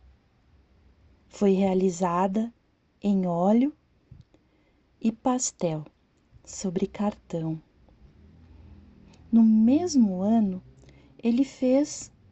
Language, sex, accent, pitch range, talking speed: Portuguese, female, Brazilian, 180-230 Hz, 65 wpm